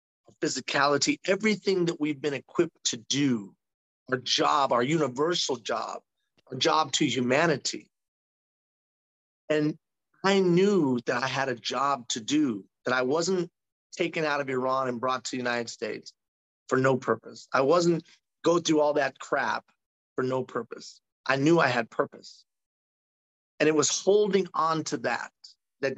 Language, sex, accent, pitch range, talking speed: English, male, American, 125-150 Hz, 150 wpm